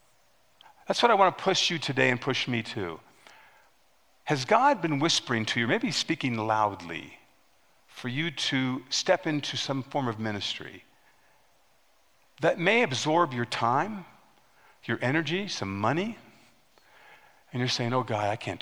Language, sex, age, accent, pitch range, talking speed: English, male, 50-69, American, 125-200 Hz, 145 wpm